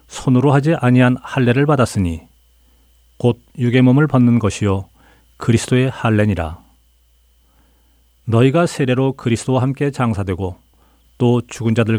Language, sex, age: Korean, male, 40-59